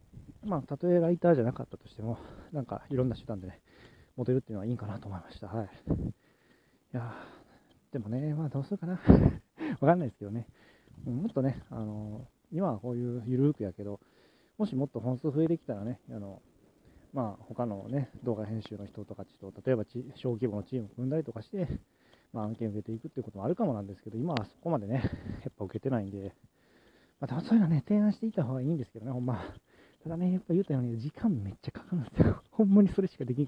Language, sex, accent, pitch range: Japanese, male, native, 105-140 Hz